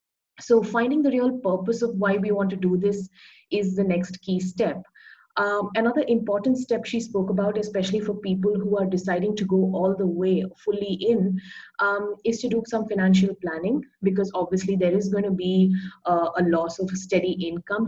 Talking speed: 190 wpm